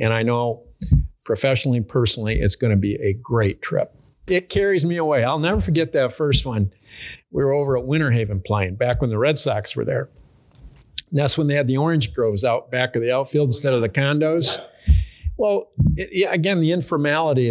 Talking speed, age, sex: 190 wpm, 50-69, male